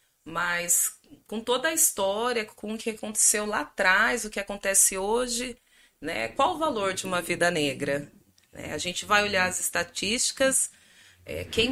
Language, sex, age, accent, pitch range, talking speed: Portuguese, female, 30-49, Brazilian, 170-240 Hz, 155 wpm